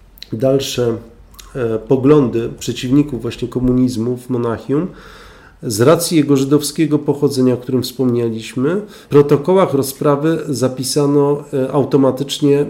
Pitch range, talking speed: 125-145 Hz, 90 wpm